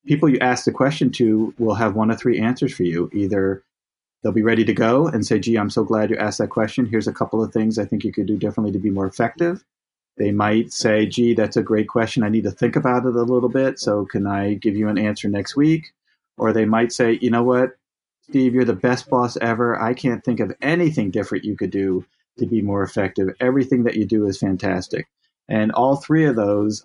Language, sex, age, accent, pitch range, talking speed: English, male, 30-49, American, 105-125 Hz, 240 wpm